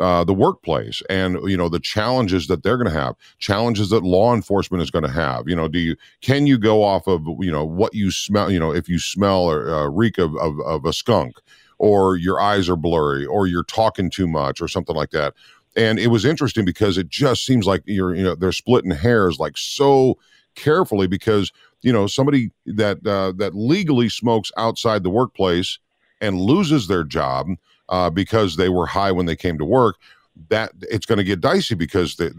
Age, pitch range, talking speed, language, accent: 50-69, 90-120 Hz, 210 wpm, English, American